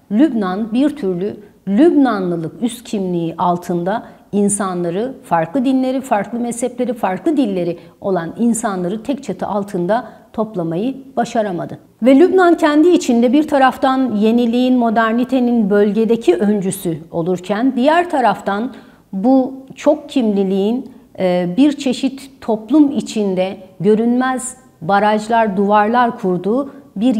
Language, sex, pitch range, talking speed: Turkish, female, 190-250 Hz, 100 wpm